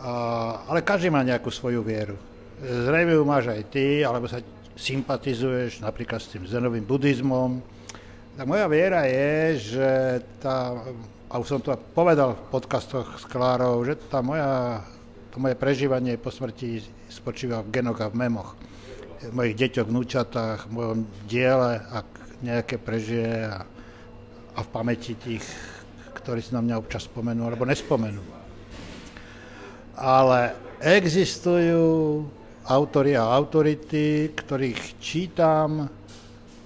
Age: 60-79